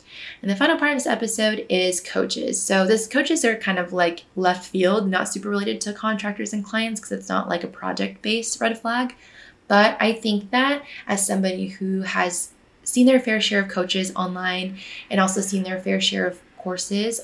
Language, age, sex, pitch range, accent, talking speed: English, 20-39, female, 180-220 Hz, American, 200 wpm